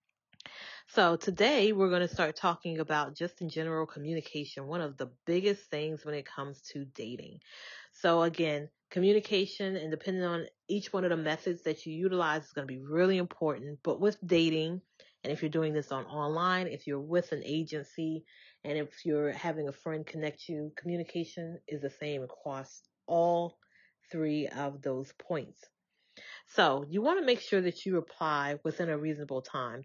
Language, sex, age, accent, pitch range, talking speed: English, female, 30-49, American, 145-175 Hz, 175 wpm